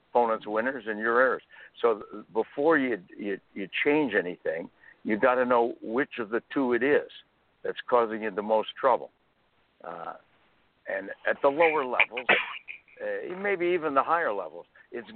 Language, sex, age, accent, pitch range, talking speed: English, male, 60-79, American, 115-145 Hz, 160 wpm